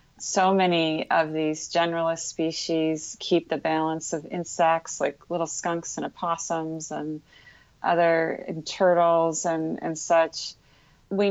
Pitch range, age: 160-190 Hz, 30-49